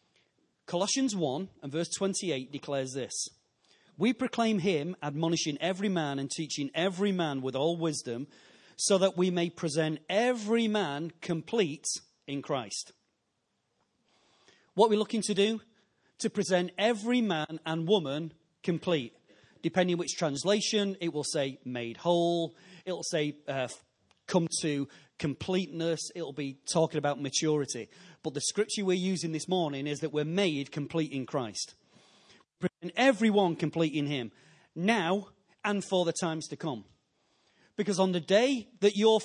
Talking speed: 140 wpm